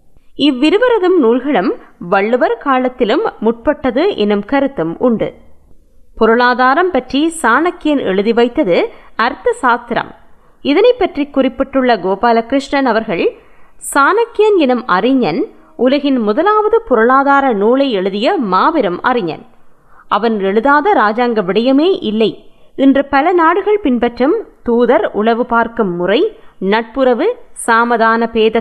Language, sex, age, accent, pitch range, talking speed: Tamil, female, 20-39, native, 225-300 Hz, 75 wpm